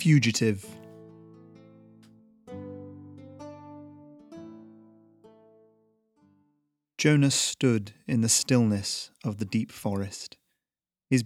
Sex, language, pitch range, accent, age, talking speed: male, English, 105-125 Hz, British, 30-49, 60 wpm